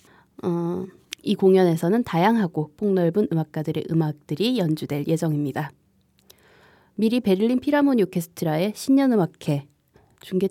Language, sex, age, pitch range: Korean, female, 20-39, 150-205 Hz